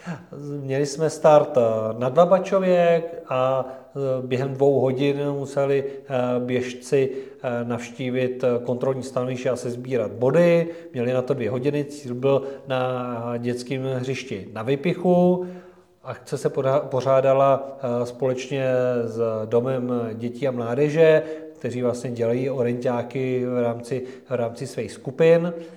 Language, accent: Czech, native